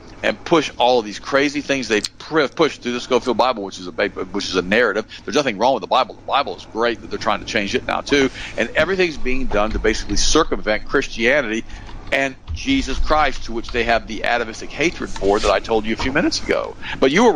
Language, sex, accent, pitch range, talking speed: English, male, American, 105-135 Hz, 235 wpm